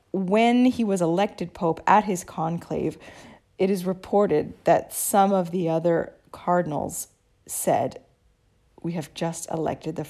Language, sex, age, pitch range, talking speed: English, female, 40-59, 165-200 Hz, 135 wpm